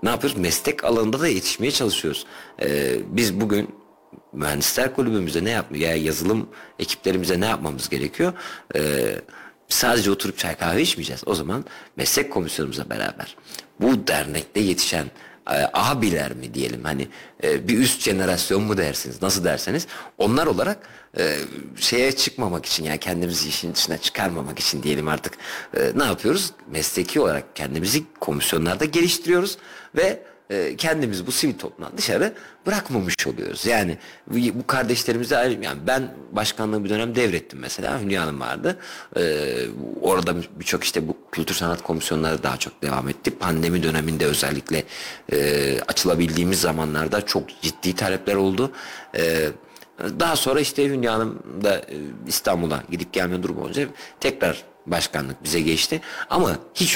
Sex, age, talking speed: male, 50-69, 135 wpm